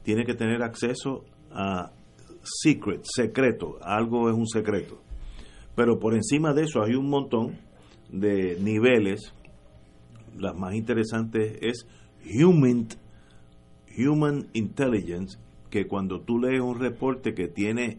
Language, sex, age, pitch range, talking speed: Spanish, male, 50-69, 100-130 Hz, 120 wpm